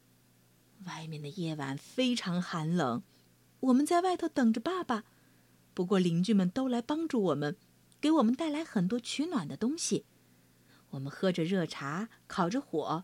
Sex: female